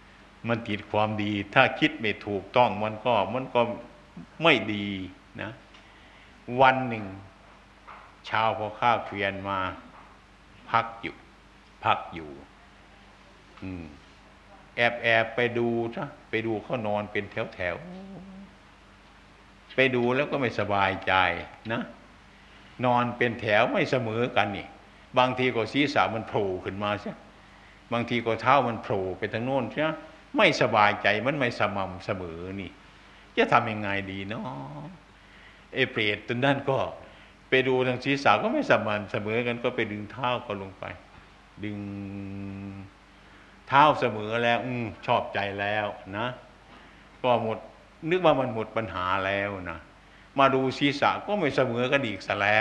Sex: male